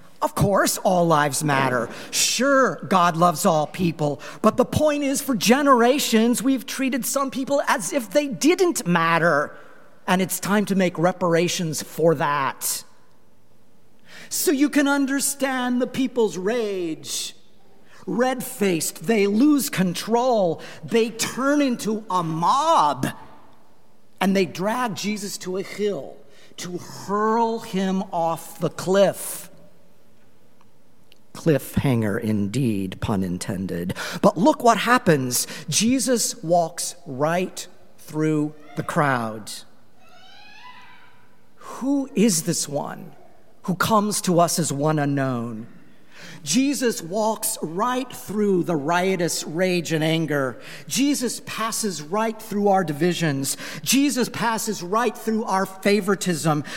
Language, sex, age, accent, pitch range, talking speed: English, male, 50-69, American, 165-235 Hz, 115 wpm